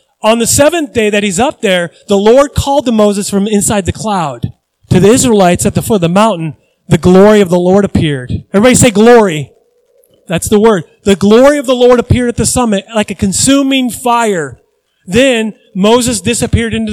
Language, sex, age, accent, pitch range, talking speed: English, male, 30-49, American, 160-220 Hz, 195 wpm